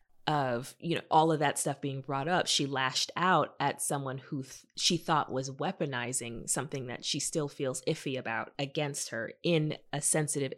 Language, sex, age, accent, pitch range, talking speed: English, female, 20-39, American, 145-225 Hz, 185 wpm